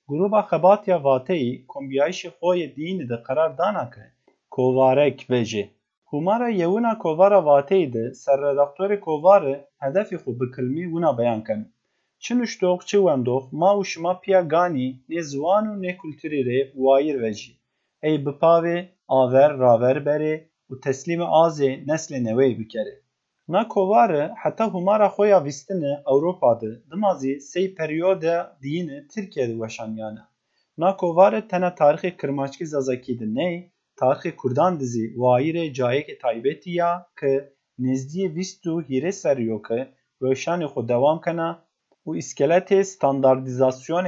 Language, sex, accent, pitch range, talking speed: Turkish, male, native, 130-180 Hz, 115 wpm